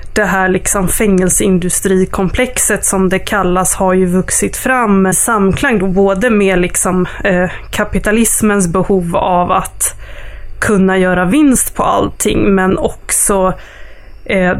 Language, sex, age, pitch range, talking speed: Swedish, female, 20-39, 185-220 Hz, 120 wpm